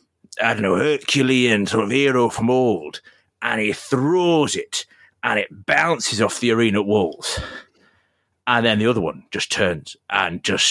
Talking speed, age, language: 165 wpm, 30-49, English